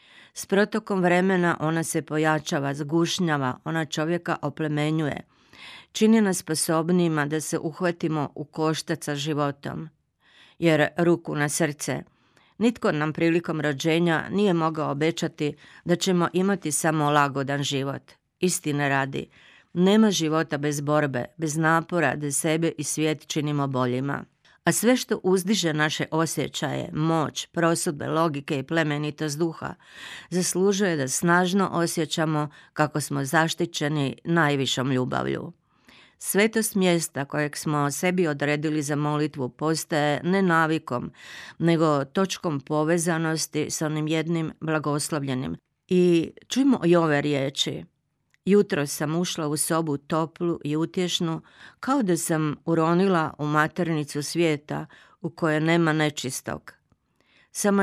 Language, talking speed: Croatian, 120 wpm